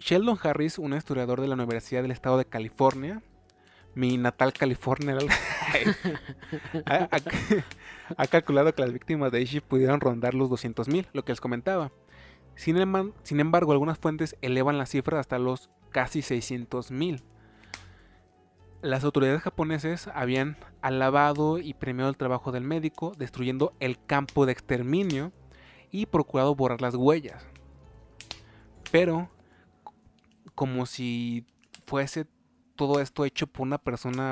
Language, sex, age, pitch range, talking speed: Spanish, male, 20-39, 125-155 Hz, 130 wpm